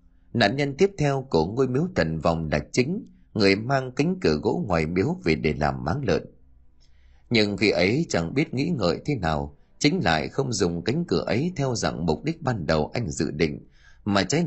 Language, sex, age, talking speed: Vietnamese, male, 30-49, 205 wpm